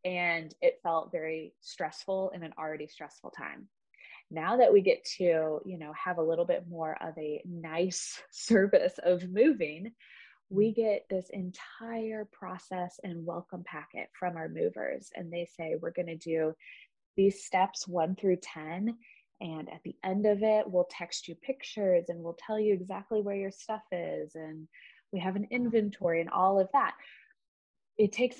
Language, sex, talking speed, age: English, female, 170 wpm, 20-39